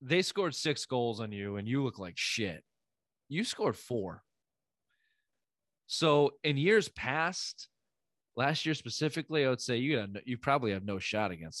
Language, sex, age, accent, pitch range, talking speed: English, male, 30-49, American, 115-140 Hz, 160 wpm